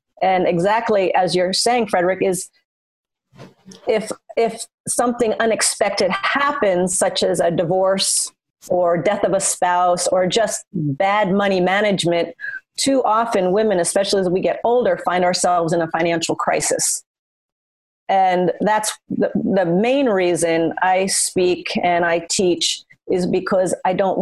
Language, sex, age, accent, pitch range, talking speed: Swedish, female, 40-59, American, 175-205 Hz, 135 wpm